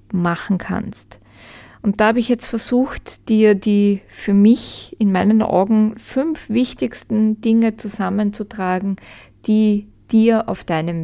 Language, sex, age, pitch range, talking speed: German, female, 20-39, 180-220 Hz, 125 wpm